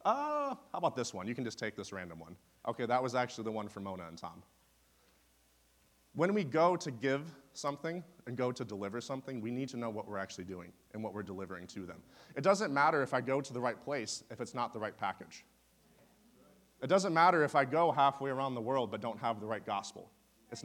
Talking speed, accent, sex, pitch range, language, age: 230 wpm, American, male, 105-140 Hz, English, 30-49